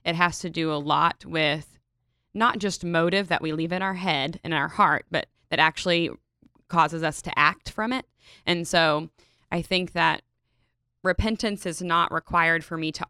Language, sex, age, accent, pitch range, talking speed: English, female, 20-39, American, 155-180 Hz, 190 wpm